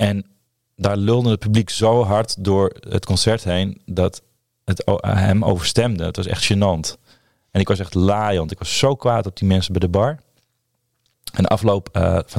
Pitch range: 90-110 Hz